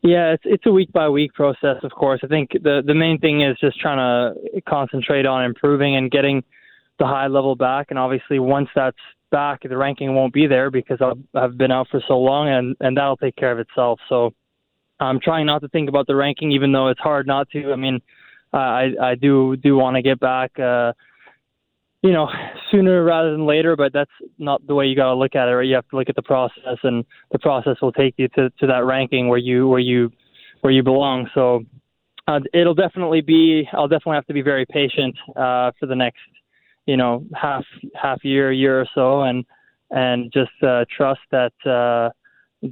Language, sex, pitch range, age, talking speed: English, male, 125-140 Hz, 20-39, 215 wpm